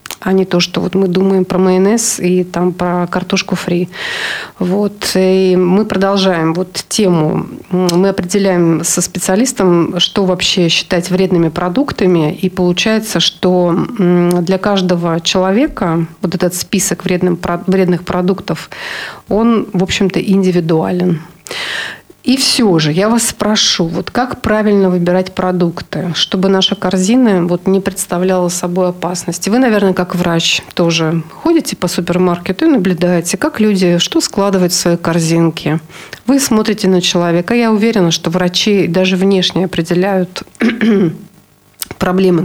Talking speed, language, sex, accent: 125 wpm, Russian, female, native